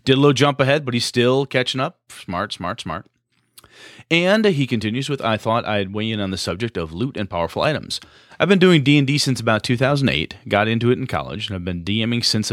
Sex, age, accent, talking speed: male, 30-49, American, 225 wpm